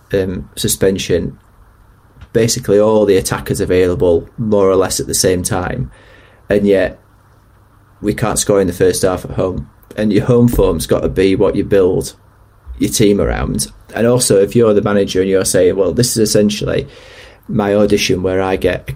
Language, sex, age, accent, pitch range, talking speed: English, male, 30-49, British, 100-115 Hz, 180 wpm